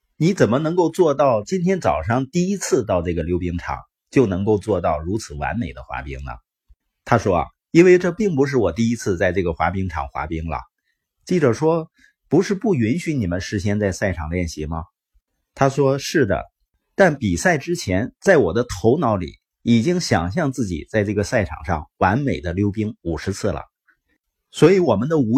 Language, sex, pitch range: Chinese, male, 90-135 Hz